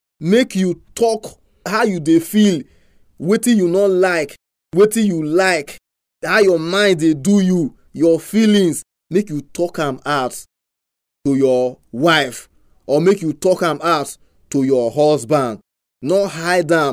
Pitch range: 130-180 Hz